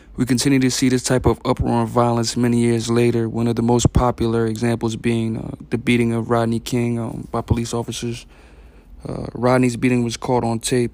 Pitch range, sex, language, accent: 115-125 Hz, male, English, American